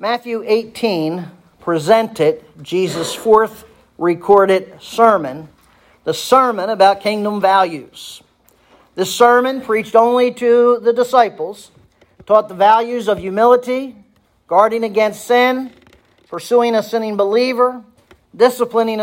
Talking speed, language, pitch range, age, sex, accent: 100 wpm, English, 200-245 Hz, 50-69, male, American